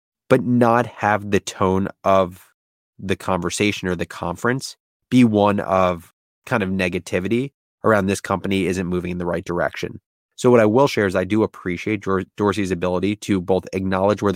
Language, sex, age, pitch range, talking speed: English, male, 20-39, 90-110 Hz, 170 wpm